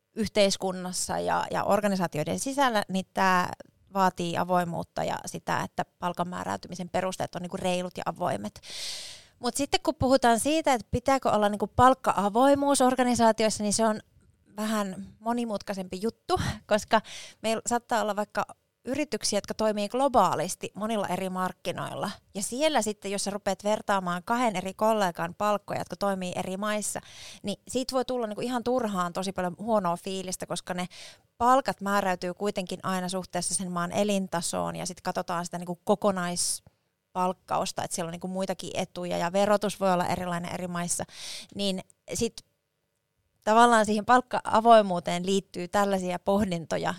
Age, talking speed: 30-49, 145 wpm